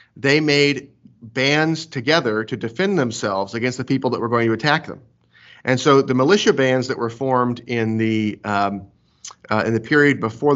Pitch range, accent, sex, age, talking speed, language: 115-140 Hz, American, male, 30-49, 180 wpm, English